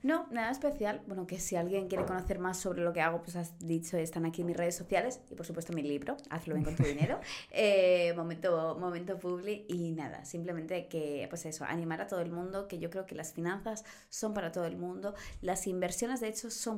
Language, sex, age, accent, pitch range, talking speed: Spanish, female, 20-39, Spanish, 165-195 Hz, 230 wpm